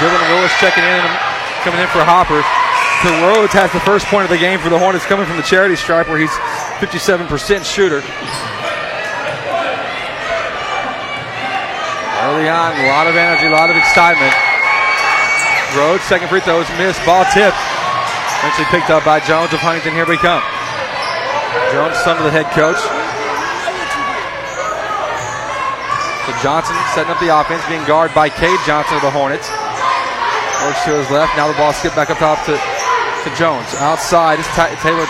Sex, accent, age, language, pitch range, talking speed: male, American, 30-49, English, 160-200 Hz, 160 wpm